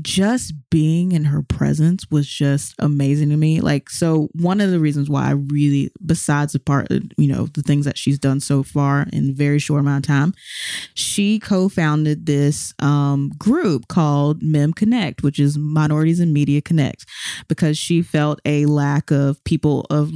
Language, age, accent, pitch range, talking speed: English, 20-39, American, 140-165 Hz, 180 wpm